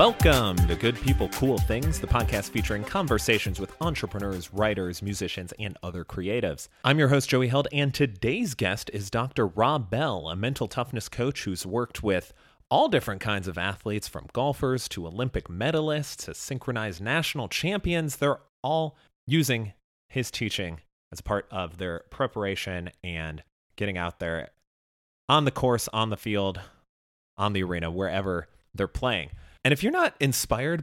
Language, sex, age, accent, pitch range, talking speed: English, male, 30-49, American, 95-135 Hz, 160 wpm